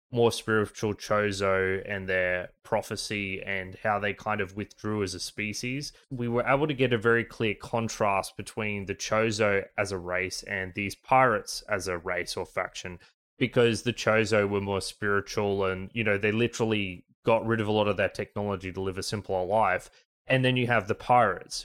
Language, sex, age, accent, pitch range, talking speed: English, male, 20-39, Australian, 95-115 Hz, 190 wpm